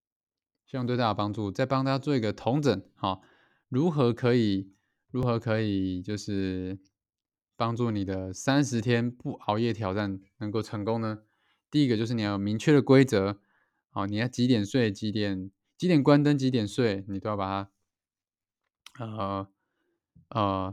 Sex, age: male, 20-39